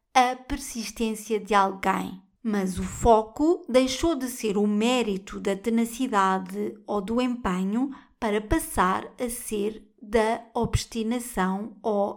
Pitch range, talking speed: 205-250 Hz, 120 wpm